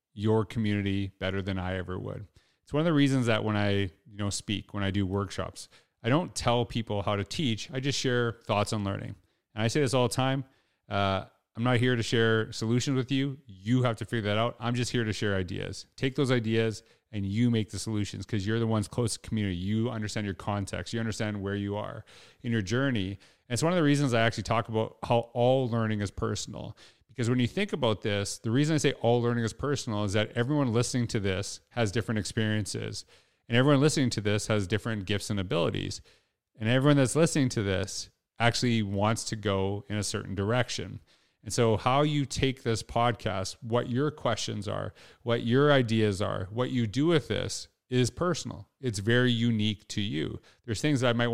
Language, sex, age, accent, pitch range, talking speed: English, male, 30-49, American, 105-125 Hz, 215 wpm